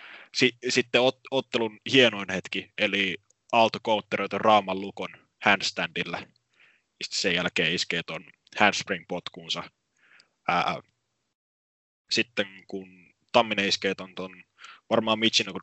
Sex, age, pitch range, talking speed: male, 20-39, 95-115 Hz, 90 wpm